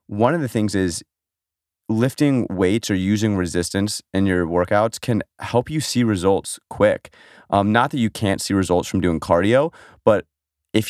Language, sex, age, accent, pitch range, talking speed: English, male, 30-49, American, 90-110 Hz, 170 wpm